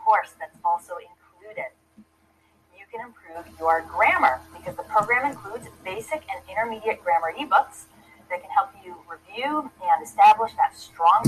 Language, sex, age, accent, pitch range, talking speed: English, female, 30-49, American, 190-310 Hz, 145 wpm